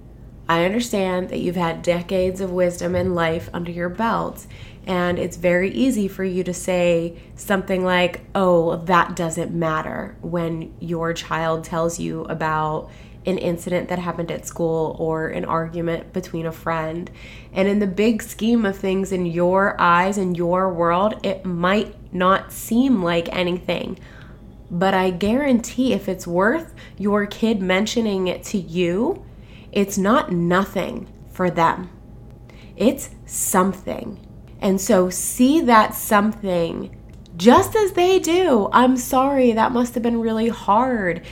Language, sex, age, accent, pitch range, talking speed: English, female, 20-39, American, 170-220 Hz, 145 wpm